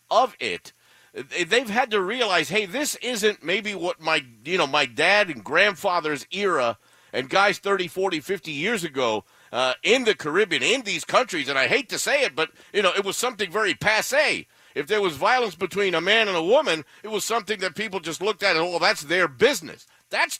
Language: English